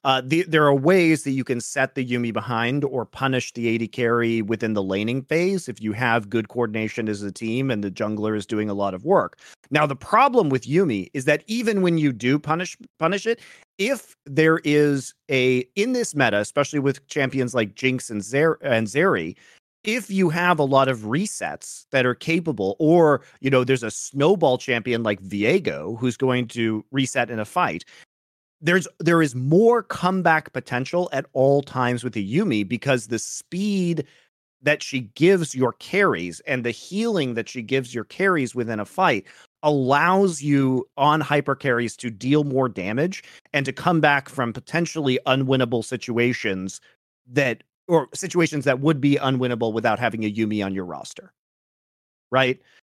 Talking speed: 175 wpm